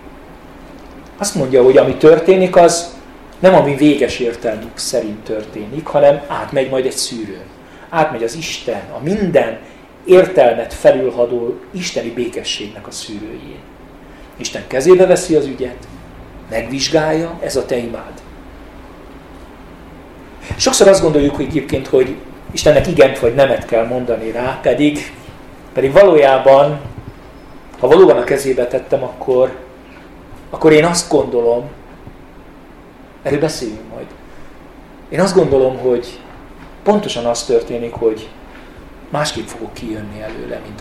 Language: Hungarian